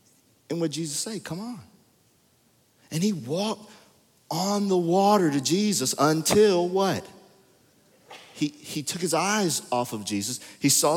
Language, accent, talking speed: English, American, 140 wpm